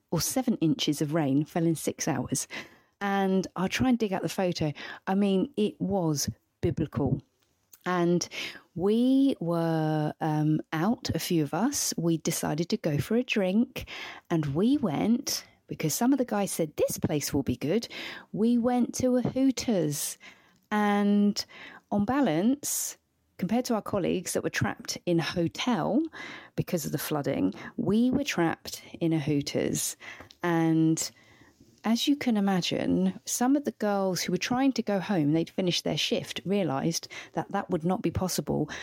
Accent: British